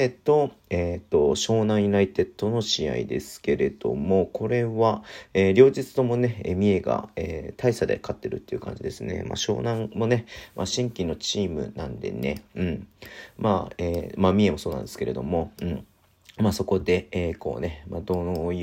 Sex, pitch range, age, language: male, 90-120 Hz, 40-59, Japanese